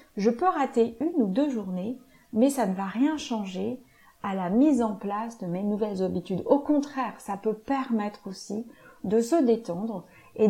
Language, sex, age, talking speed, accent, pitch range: French, female, 40-59, 185 wpm, French, 190-245 Hz